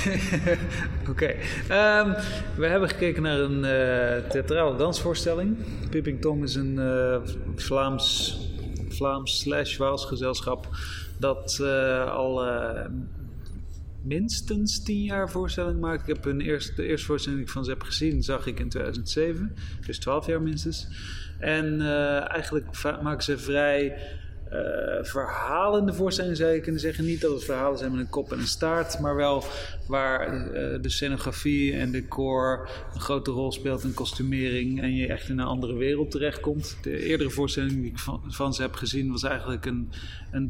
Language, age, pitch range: English, 30-49, 125-150 Hz